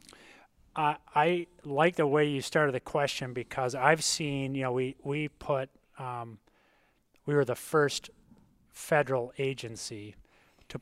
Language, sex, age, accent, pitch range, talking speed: English, male, 30-49, American, 110-140 Hz, 140 wpm